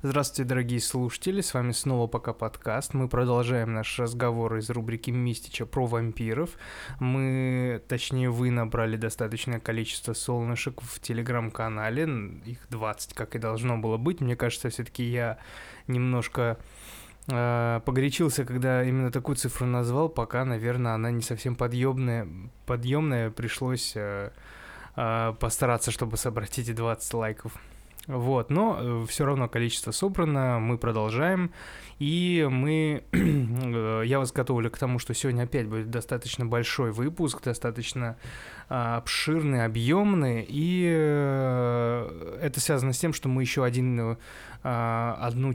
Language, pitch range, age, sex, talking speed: Russian, 115-130 Hz, 20-39, male, 130 wpm